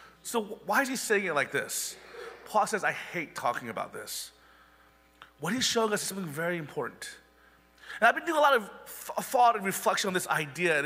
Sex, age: male, 30-49